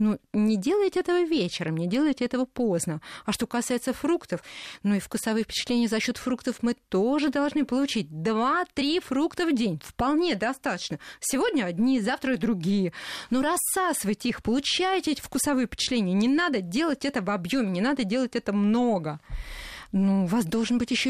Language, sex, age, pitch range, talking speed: Russian, female, 30-49, 195-265 Hz, 170 wpm